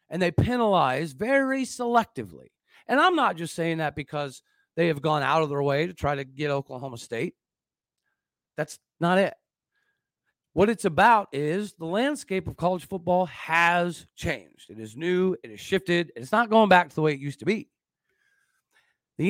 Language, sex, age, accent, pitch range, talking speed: English, male, 40-59, American, 150-210 Hz, 180 wpm